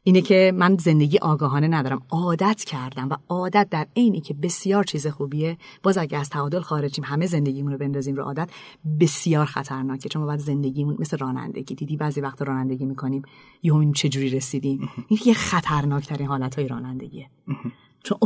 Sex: female